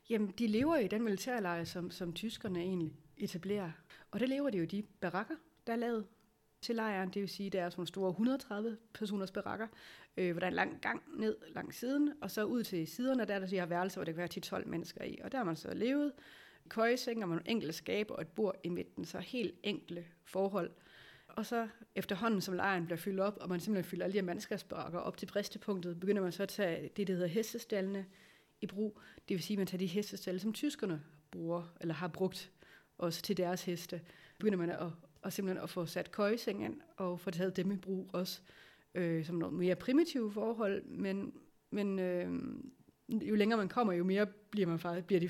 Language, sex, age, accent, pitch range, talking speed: Danish, female, 30-49, native, 180-215 Hz, 220 wpm